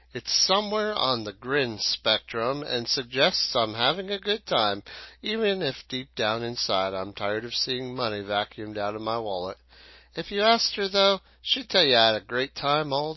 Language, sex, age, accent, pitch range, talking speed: English, male, 40-59, American, 105-150 Hz, 190 wpm